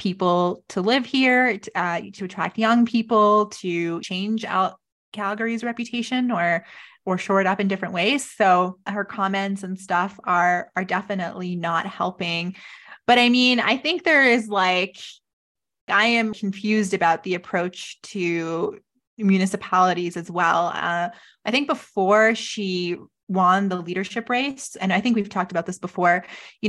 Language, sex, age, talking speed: English, female, 20-39, 155 wpm